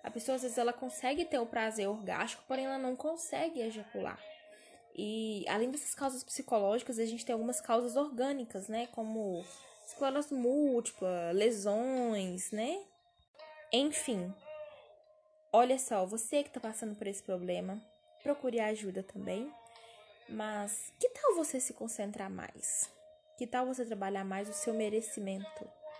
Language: Portuguese